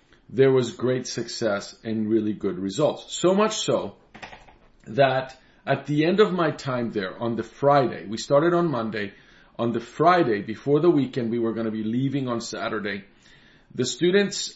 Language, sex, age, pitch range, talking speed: English, male, 40-59, 115-145 Hz, 175 wpm